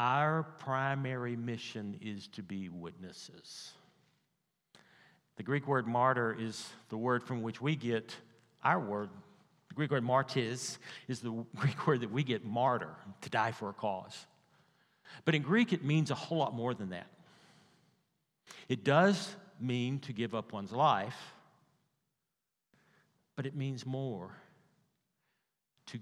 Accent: American